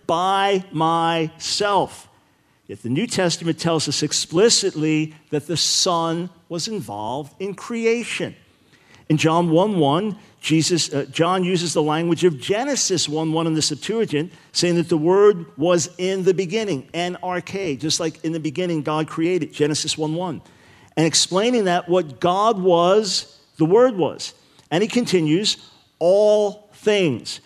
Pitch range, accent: 160-195 Hz, American